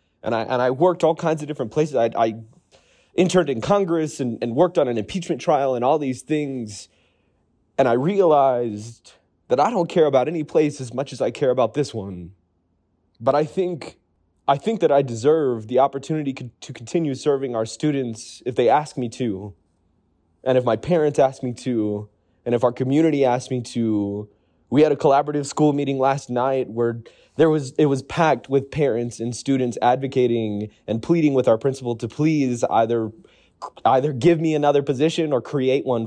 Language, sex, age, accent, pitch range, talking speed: English, male, 20-39, American, 110-150 Hz, 190 wpm